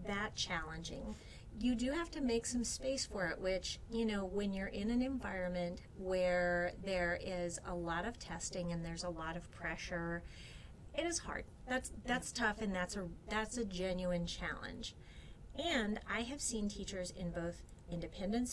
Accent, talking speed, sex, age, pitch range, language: American, 170 wpm, female, 30-49, 165-210 Hz, English